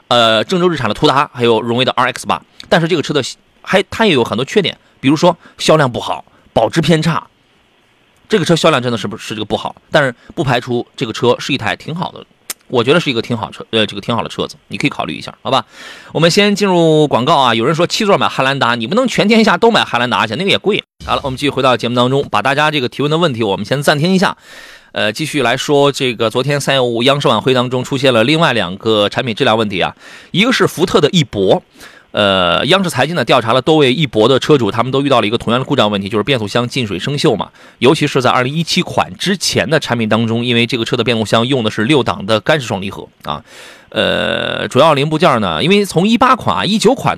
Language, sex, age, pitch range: Chinese, male, 30-49, 115-165 Hz